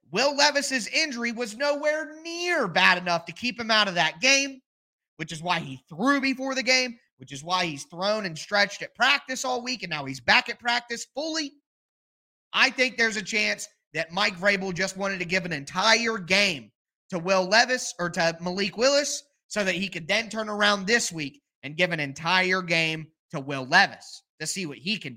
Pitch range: 170-245 Hz